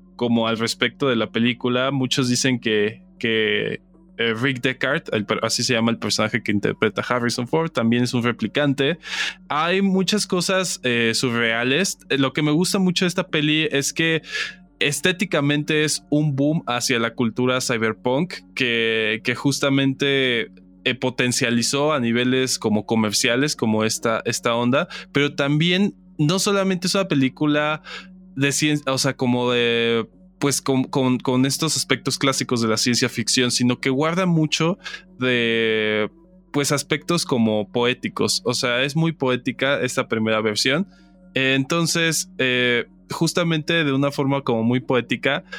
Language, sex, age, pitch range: Spanish, male, 20-39, 120-155 Hz